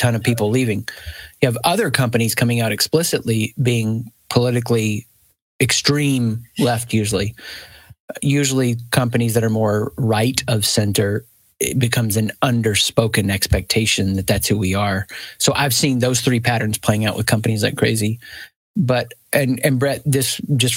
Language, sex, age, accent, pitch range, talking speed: English, male, 30-49, American, 110-135 Hz, 150 wpm